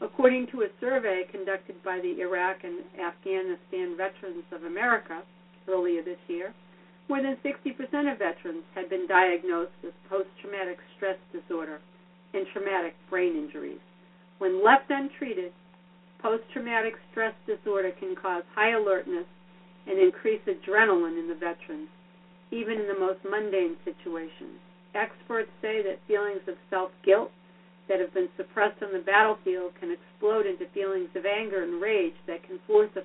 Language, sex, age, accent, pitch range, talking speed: English, female, 50-69, American, 180-215 Hz, 145 wpm